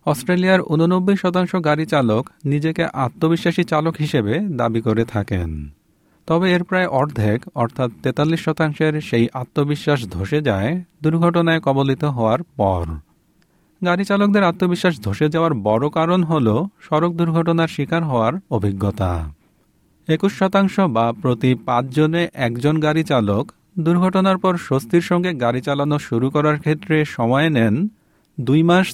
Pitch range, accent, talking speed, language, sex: 120-170 Hz, native, 125 wpm, Bengali, male